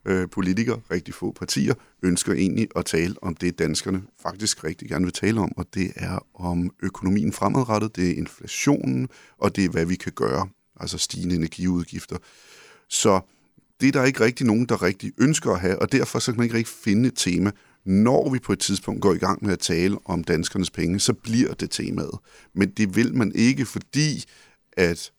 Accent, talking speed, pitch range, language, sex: native, 200 wpm, 90-110 Hz, Danish, male